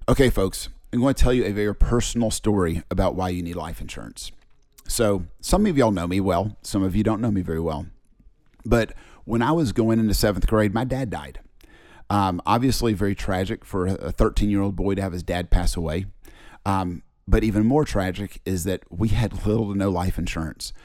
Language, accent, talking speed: English, American, 210 wpm